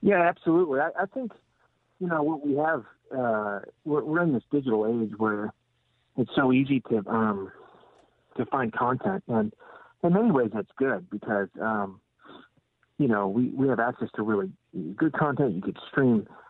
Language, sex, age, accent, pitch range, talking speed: English, male, 50-69, American, 110-145 Hz, 170 wpm